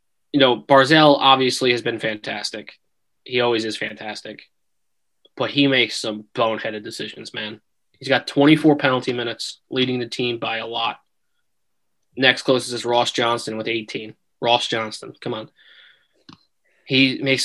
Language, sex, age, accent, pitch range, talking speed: English, male, 20-39, American, 120-150 Hz, 145 wpm